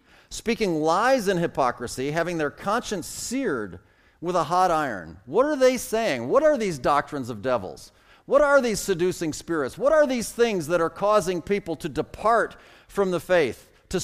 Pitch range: 140-210 Hz